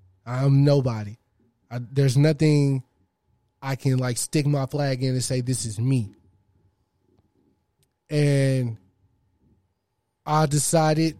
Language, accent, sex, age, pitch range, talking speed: English, American, male, 20-39, 105-145 Hz, 105 wpm